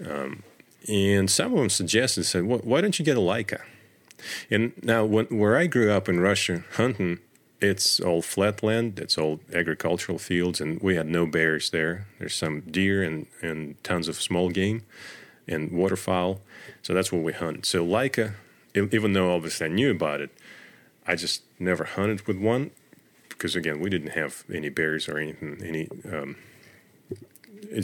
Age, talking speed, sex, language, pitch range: 40-59, 170 wpm, male, English, 85-105 Hz